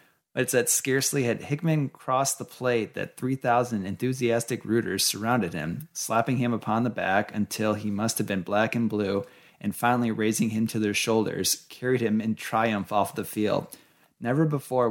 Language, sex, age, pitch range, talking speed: English, male, 30-49, 100-120 Hz, 175 wpm